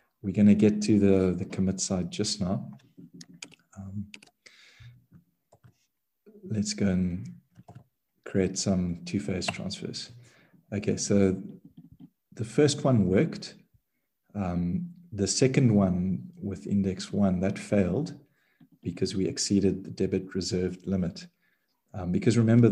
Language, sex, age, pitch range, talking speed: English, male, 40-59, 95-115 Hz, 120 wpm